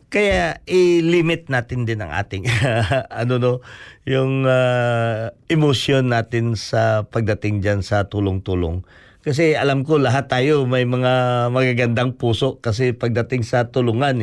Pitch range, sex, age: 120-170 Hz, male, 50-69